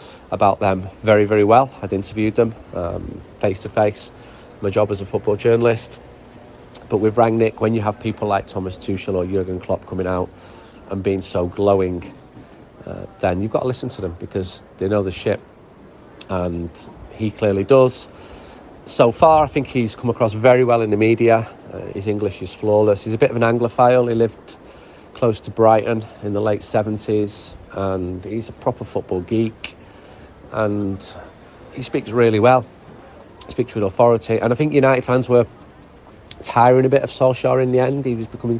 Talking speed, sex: 180 wpm, male